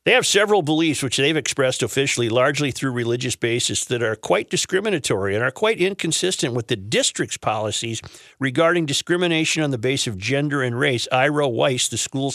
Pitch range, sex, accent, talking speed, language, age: 120-155 Hz, male, American, 180 wpm, English, 50-69